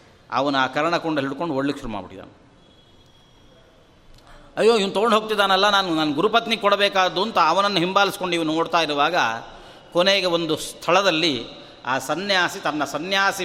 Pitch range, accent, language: 155-195 Hz, native, Kannada